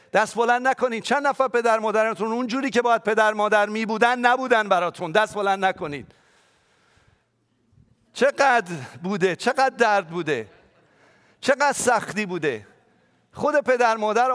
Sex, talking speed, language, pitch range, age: male, 125 wpm, English, 175-225 Hz, 50-69